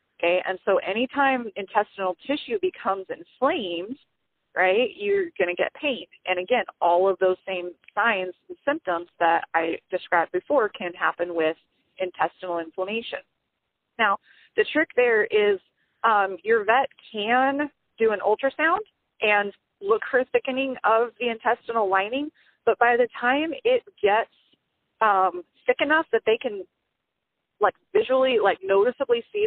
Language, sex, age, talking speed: English, female, 30-49, 140 wpm